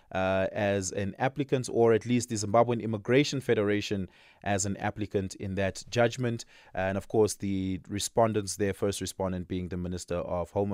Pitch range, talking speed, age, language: 100-120 Hz, 170 wpm, 20-39, English